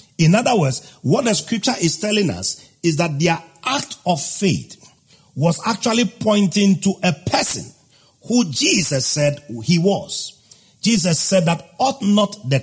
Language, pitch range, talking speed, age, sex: English, 140-190 Hz, 150 wpm, 50-69, male